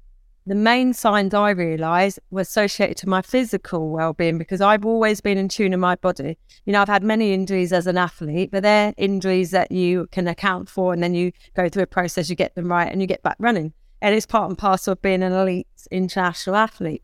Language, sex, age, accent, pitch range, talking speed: English, female, 30-49, British, 185-240 Hz, 225 wpm